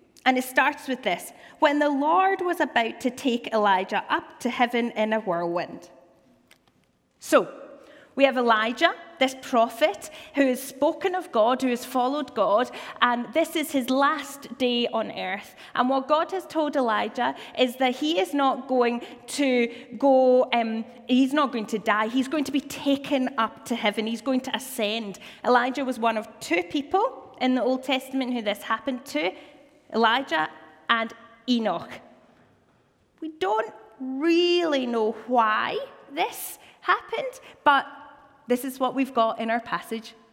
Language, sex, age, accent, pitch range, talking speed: English, female, 20-39, British, 235-295 Hz, 160 wpm